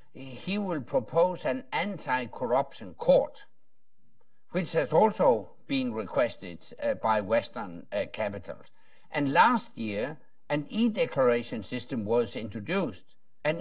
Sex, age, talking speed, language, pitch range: male, 60-79, 110 wpm, English, 130-210 Hz